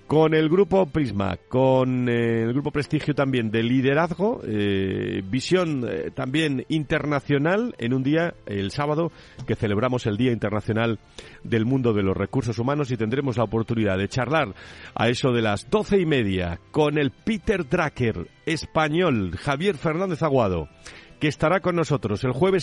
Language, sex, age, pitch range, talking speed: Spanish, male, 40-59, 105-155 Hz, 155 wpm